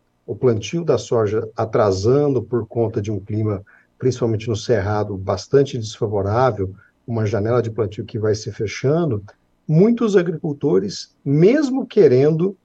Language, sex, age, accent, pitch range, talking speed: Portuguese, male, 50-69, Brazilian, 110-140 Hz, 130 wpm